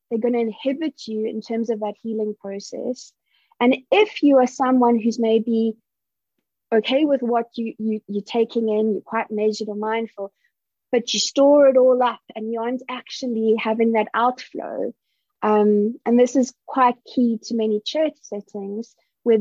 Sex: female